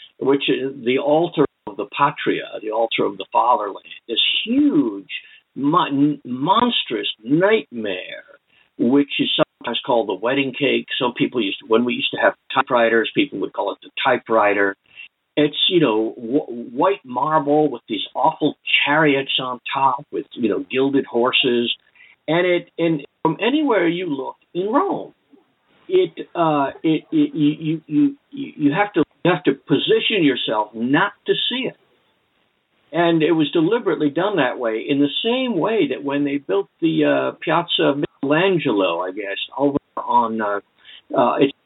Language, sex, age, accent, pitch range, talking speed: English, male, 50-69, American, 135-215 Hz, 155 wpm